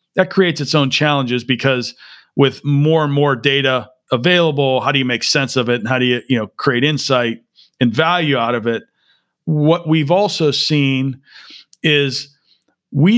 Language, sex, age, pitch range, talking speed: English, male, 40-59, 135-160 Hz, 175 wpm